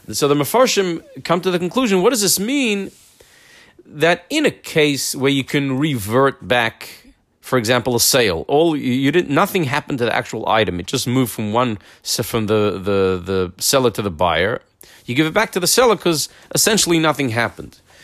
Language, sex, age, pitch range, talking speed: English, male, 40-59, 115-160 Hz, 190 wpm